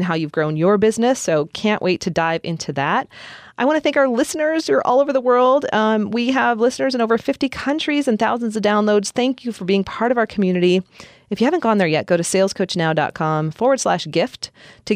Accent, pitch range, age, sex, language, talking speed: American, 160-230 Hz, 30-49, female, English, 230 wpm